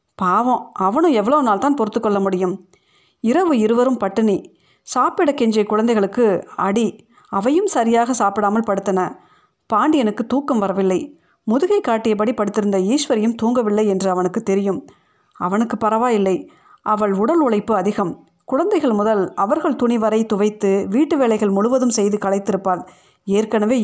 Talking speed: 115 wpm